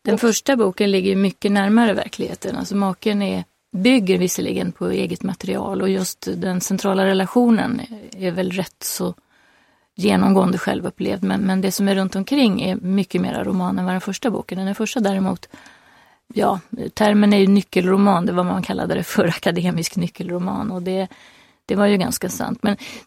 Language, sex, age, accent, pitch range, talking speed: Swedish, female, 30-49, native, 190-225 Hz, 175 wpm